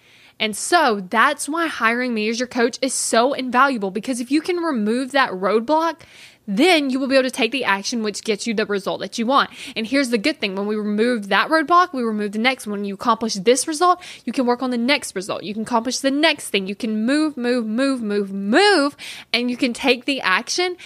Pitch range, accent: 210-270 Hz, American